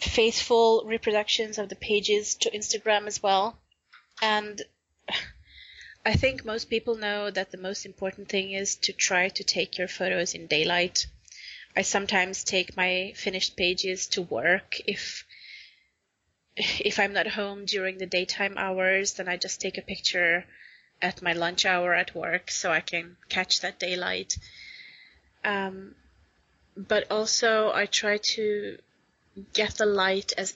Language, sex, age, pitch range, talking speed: English, female, 30-49, 185-210 Hz, 145 wpm